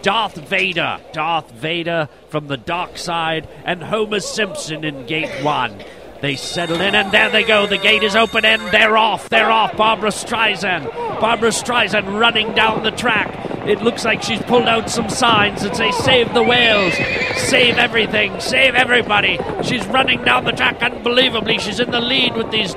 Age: 40-59